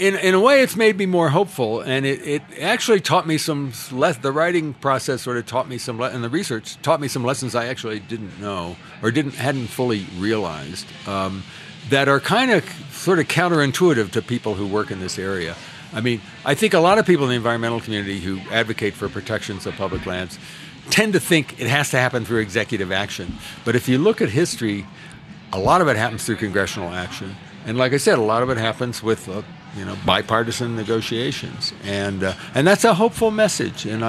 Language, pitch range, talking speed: English, 110-155 Hz, 215 wpm